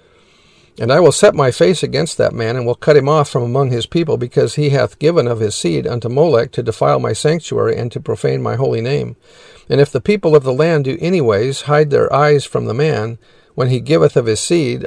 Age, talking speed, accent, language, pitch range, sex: 50-69, 235 wpm, American, English, 120-155 Hz, male